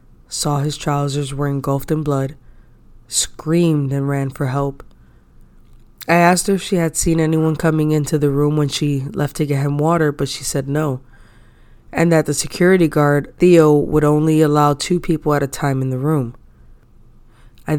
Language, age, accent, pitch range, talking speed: English, 20-39, American, 135-160 Hz, 180 wpm